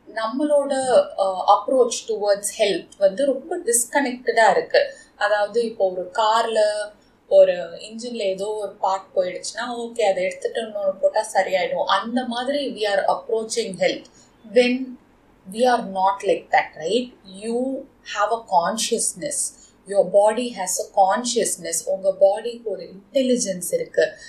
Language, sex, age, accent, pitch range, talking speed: Tamil, female, 20-39, native, 205-275 Hz, 125 wpm